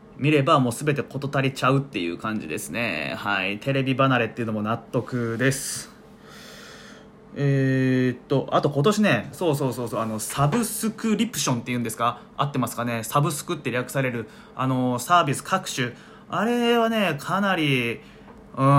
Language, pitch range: Japanese, 125-185 Hz